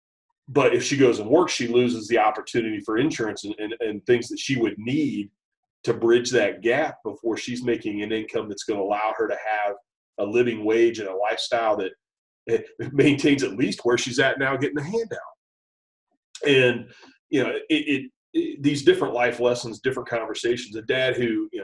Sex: male